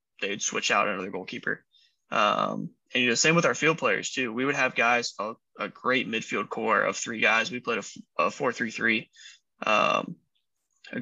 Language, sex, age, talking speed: English, male, 20-39, 195 wpm